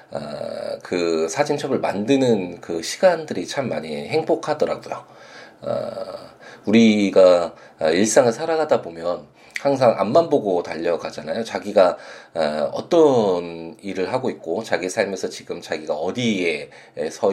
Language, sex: Korean, male